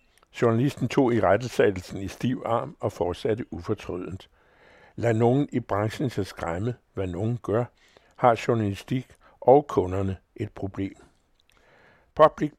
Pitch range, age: 100-125 Hz, 60-79